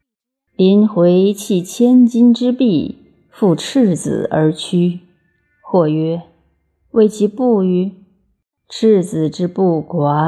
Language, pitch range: Chinese, 165-215 Hz